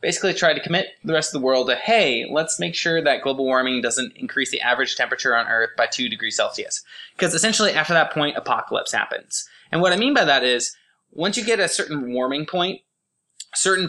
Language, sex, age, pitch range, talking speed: English, male, 20-39, 130-185 Hz, 215 wpm